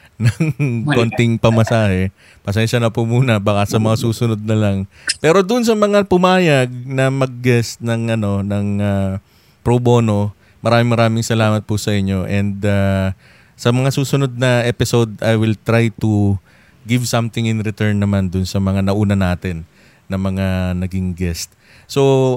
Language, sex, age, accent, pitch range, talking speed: Filipino, male, 20-39, native, 100-120 Hz, 160 wpm